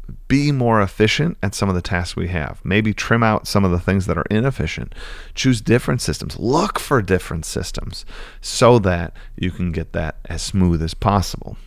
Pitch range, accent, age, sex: 85-105 Hz, American, 40-59, male